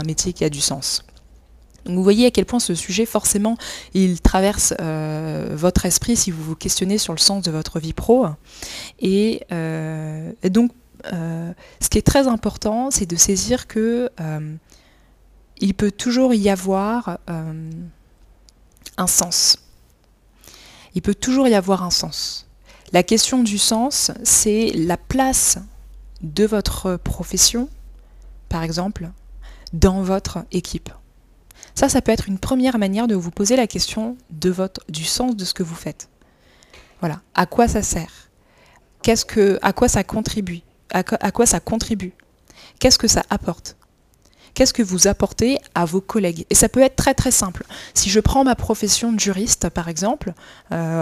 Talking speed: 165 wpm